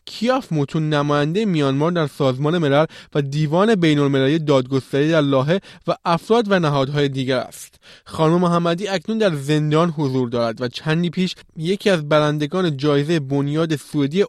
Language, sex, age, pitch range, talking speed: Persian, male, 20-39, 145-185 Hz, 145 wpm